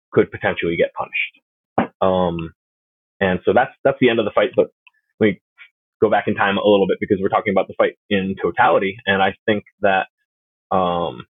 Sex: male